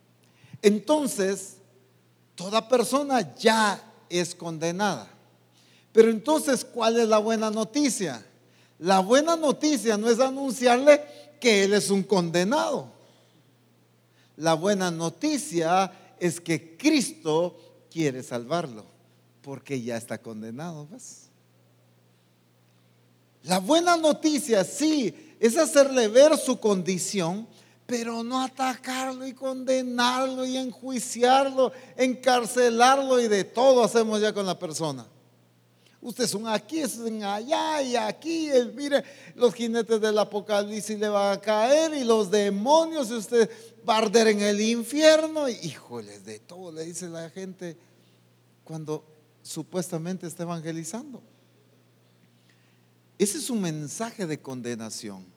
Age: 50-69